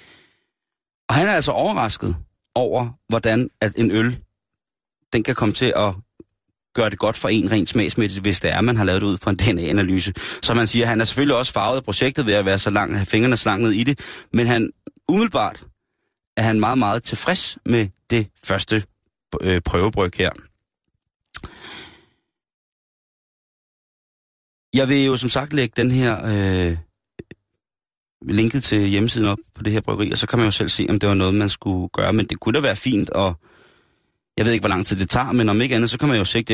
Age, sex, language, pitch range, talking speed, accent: 30-49, male, Danish, 95-120 Hz, 200 wpm, native